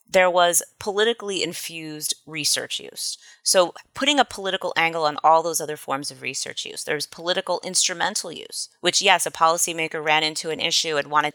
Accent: American